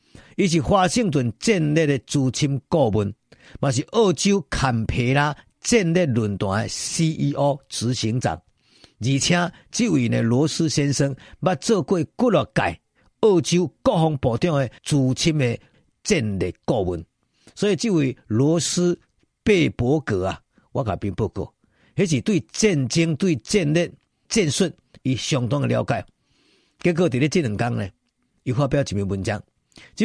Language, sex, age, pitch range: Chinese, male, 50-69, 110-165 Hz